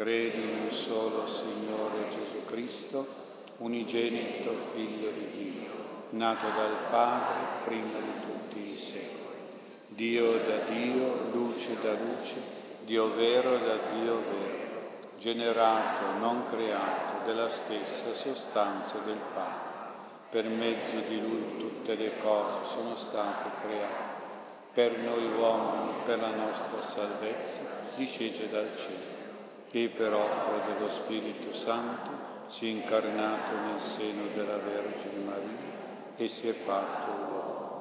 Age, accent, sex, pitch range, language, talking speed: 50-69, native, male, 110-120 Hz, Italian, 120 wpm